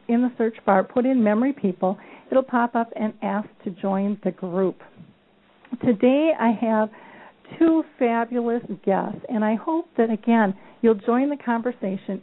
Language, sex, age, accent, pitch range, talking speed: English, female, 50-69, American, 205-250 Hz, 160 wpm